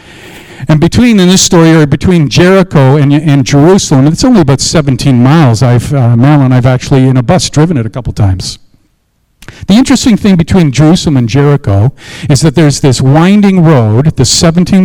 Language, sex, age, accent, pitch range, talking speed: English, male, 50-69, American, 135-180 Hz, 180 wpm